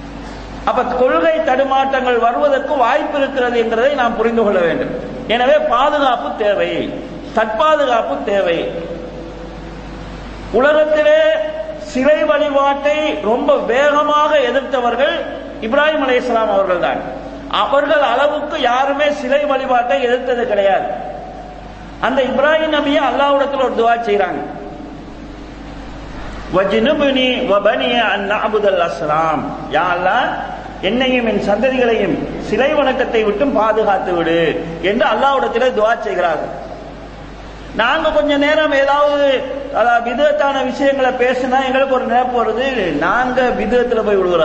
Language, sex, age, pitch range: English, male, 50-69, 235-290 Hz